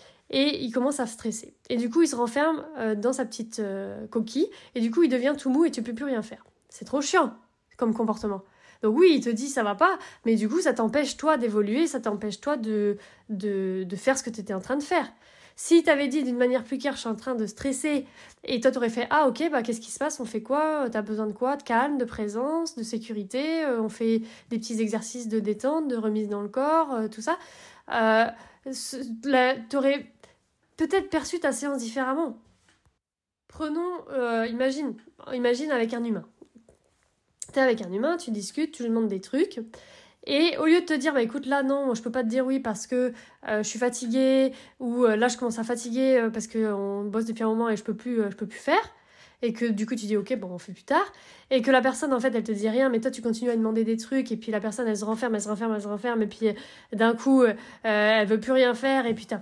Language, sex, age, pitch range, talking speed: French, female, 20-39, 220-270 Hz, 245 wpm